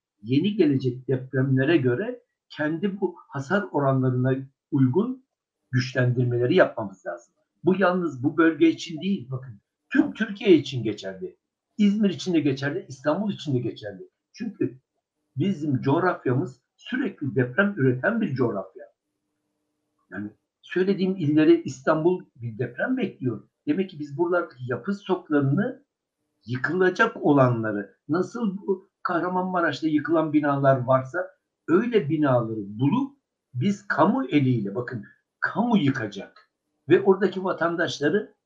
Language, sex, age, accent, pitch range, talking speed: Turkish, male, 60-79, native, 130-195 Hz, 110 wpm